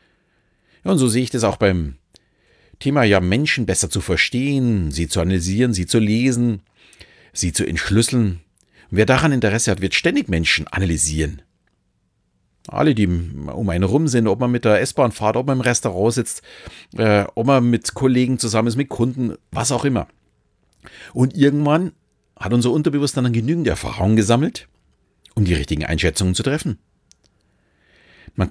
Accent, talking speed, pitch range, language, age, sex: German, 160 wpm, 90-120 Hz, German, 40-59, male